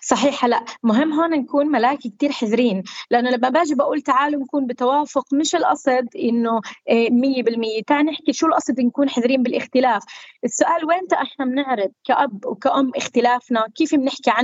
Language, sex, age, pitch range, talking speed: Arabic, female, 20-39, 240-290 Hz, 145 wpm